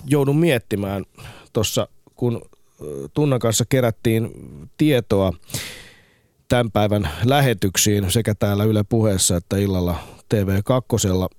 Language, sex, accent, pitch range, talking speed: Finnish, male, native, 95-125 Hz, 90 wpm